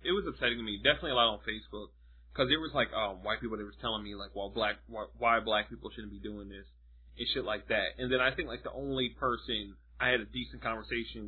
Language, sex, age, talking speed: English, male, 20-39, 260 wpm